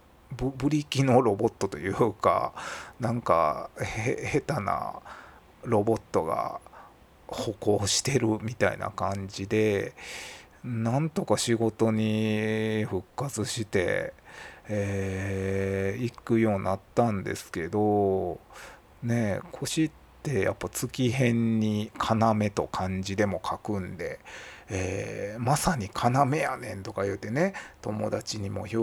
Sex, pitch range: male, 100-135 Hz